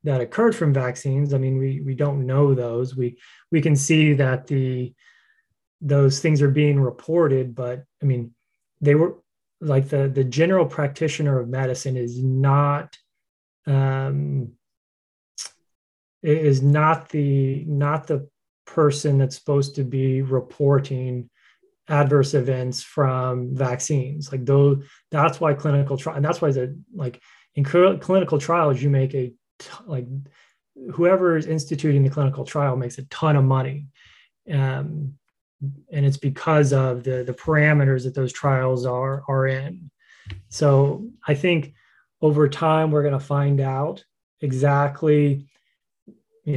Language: English